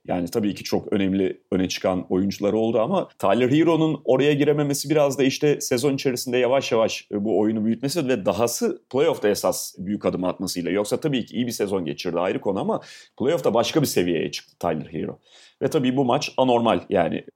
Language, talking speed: Turkish, 185 wpm